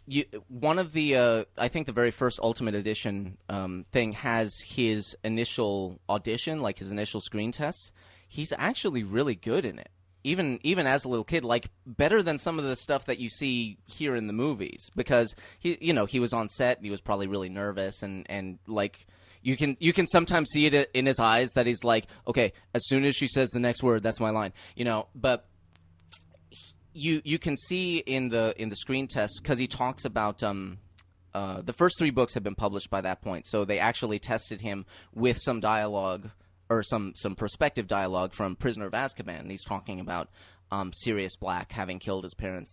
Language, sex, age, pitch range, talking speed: English, male, 20-39, 95-130 Hz, 205 wpm